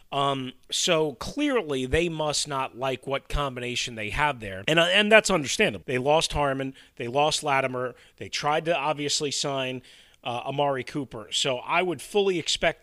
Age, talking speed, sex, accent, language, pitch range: 30-49, 170 wpm, male, American, English, 125-155 Hz